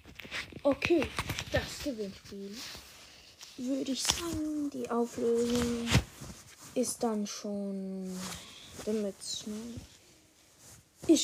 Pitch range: 215-275 Hz